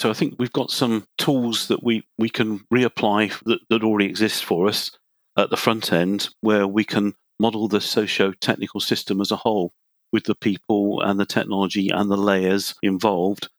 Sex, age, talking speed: male, 40-59, 185 wpm